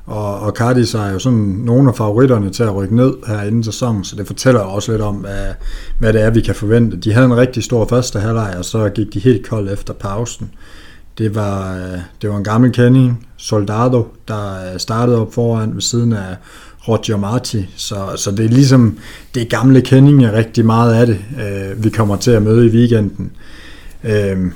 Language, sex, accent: Danish, male, native